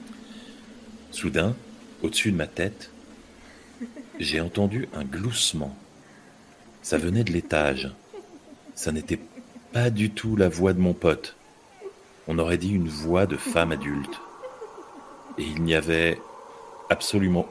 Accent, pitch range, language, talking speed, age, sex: French, 85-105 Hz, French, 125 wpm, 40-59, male